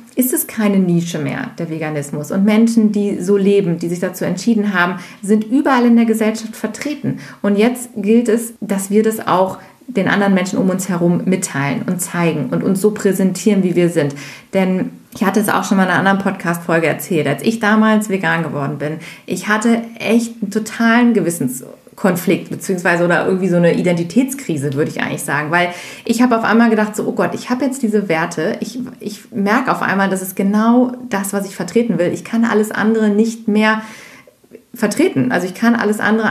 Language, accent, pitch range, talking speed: German, German, 175-225 Hz, 200 wpm